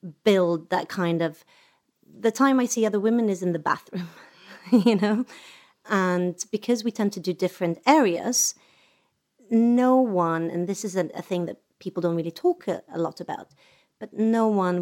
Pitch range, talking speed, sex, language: 180-250 Hz, 180 wpm, female, English